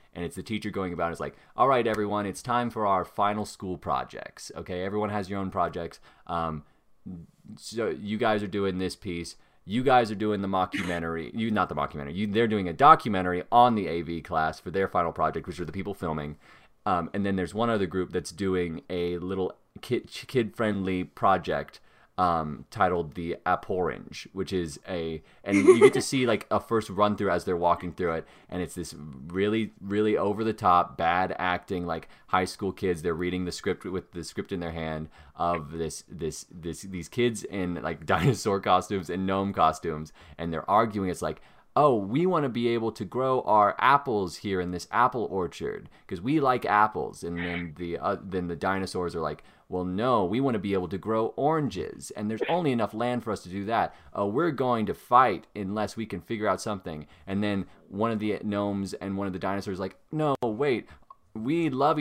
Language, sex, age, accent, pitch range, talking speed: English, male, 20-39, American, 85-105 Hz, 210 wpm